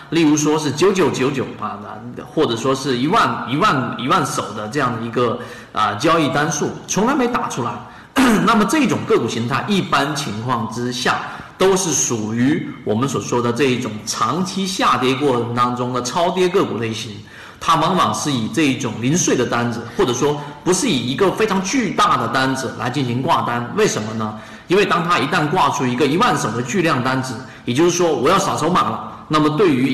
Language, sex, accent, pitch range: Chinese, male, native, 120-150 Hz